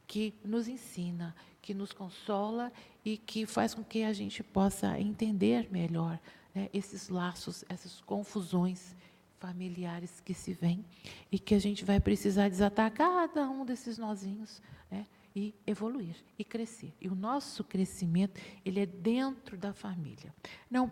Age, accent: 50-69, Brazilian